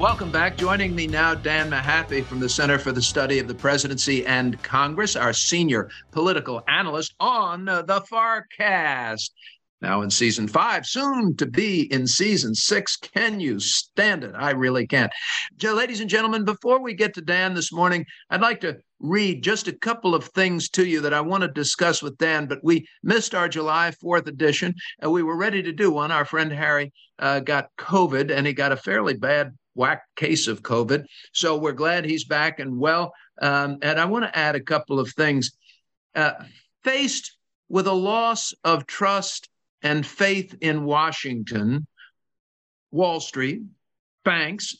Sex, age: male, 50-69